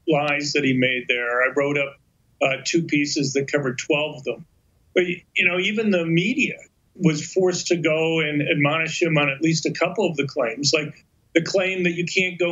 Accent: American